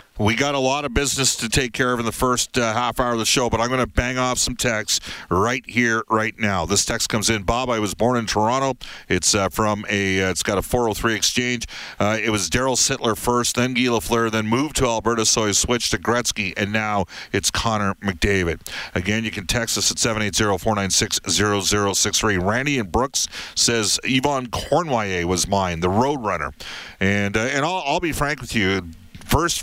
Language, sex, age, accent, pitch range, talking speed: English, male, 40-59, American, 100-120 Hz, 225 wpm